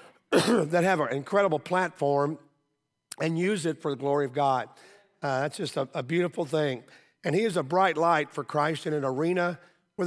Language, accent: English, American